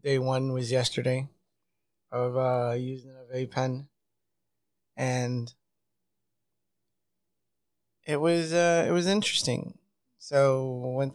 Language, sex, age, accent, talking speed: English, male, 20-39, American, 95 wpm